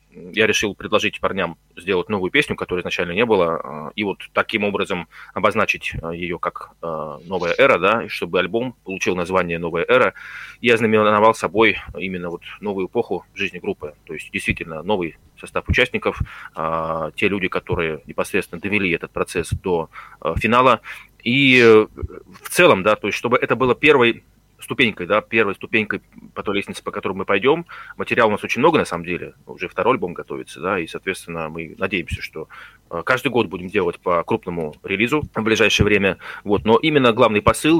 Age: 30-49